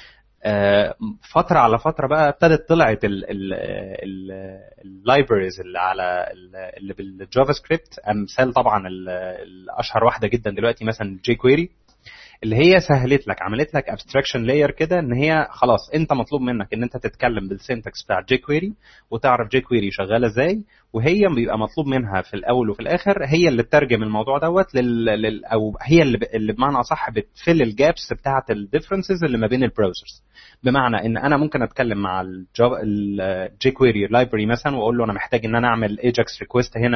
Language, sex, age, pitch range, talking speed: Arabic, male, 30-49, 105-140 Hz, 155 wpm